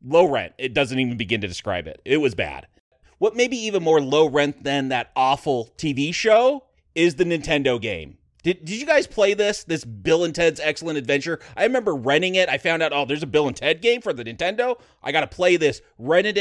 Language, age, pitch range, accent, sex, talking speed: English, 30-49, 140-205 Hz, American, male, 230 wpm